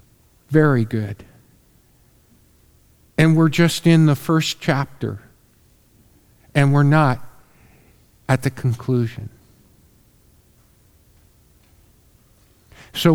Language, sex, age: English, male, 50-69